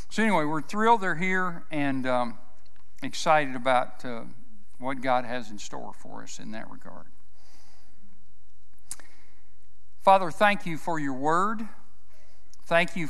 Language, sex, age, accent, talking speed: English, male, 60-79, American, 135 wpm